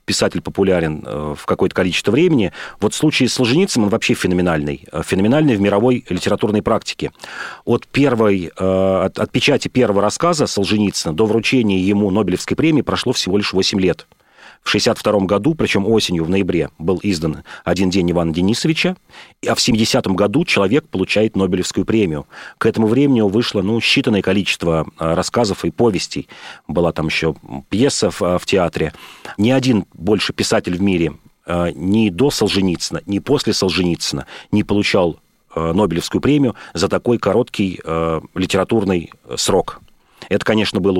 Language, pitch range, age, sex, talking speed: Russian, 90-115 Hz, 40-59, male, 140 wpm